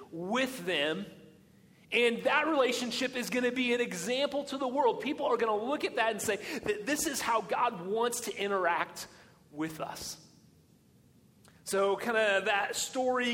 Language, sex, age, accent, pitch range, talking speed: English, male, 30-49, American, 200-245 Hz, 170 wpm